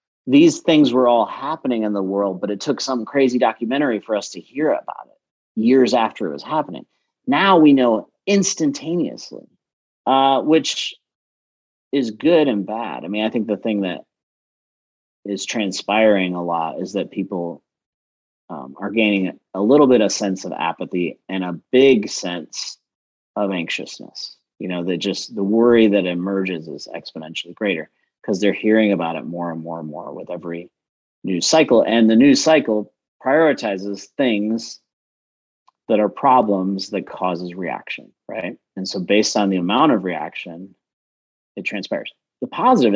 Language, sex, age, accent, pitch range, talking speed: English, male, 30-49, American, 90-115 Hz, 160 wpm